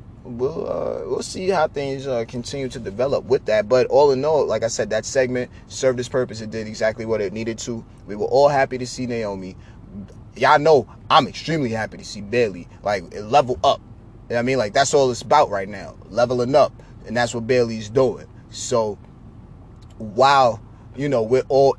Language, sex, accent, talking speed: English, male, American, 205 wpm